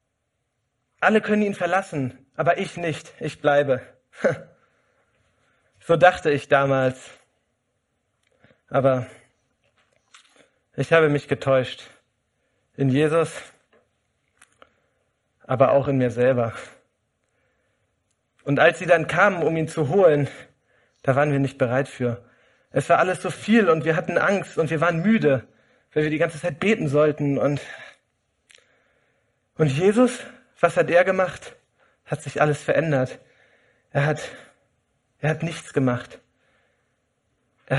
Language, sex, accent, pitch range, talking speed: German, male, German, 130-165 Hz, 125 wpm